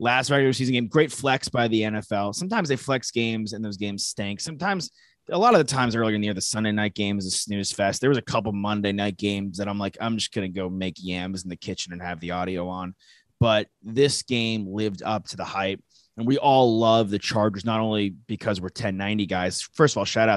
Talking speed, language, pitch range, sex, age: 255 wpm, English, 95-110 Hz, male, 20-39